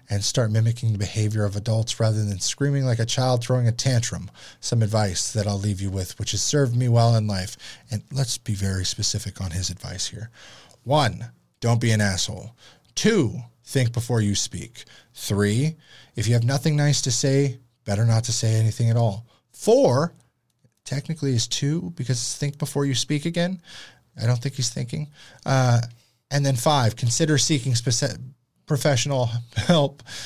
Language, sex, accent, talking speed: English, male, American, 175 wpm